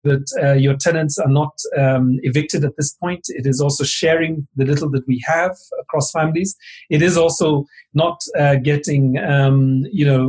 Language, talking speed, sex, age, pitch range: English, 180 wpm, male, 40-59, 140-155 Hz